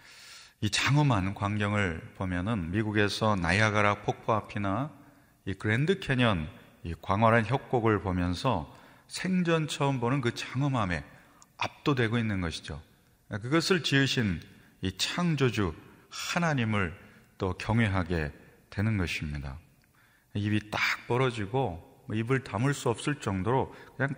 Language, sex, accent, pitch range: Korean, male, native, 95-135 Hz